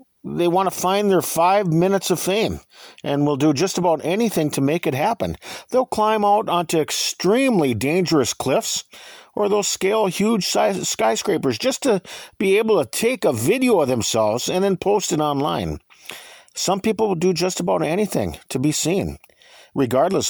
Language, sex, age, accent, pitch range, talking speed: English, male, 50-69, American, 135-205 Hz, 170 wpm